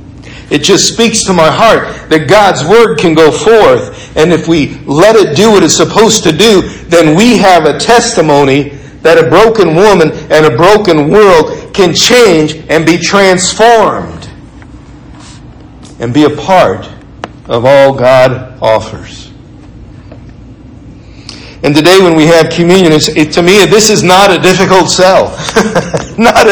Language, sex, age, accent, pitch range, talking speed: English, male, 60-79, American, 145-200 Hz, 145 wpm